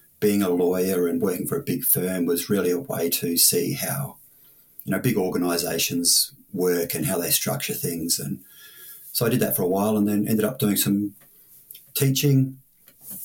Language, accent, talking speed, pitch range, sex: English, Australian, 185 wpm, 100-125 Hz, male